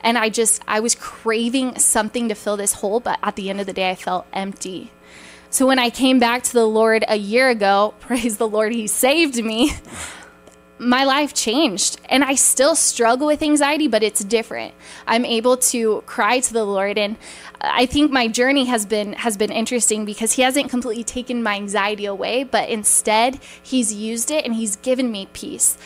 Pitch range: 210-250 Hz